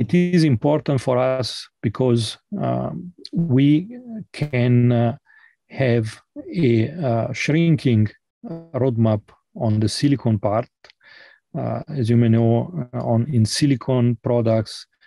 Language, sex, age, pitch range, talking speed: English, male, 40-59, 110-130 Hz, 110 wpm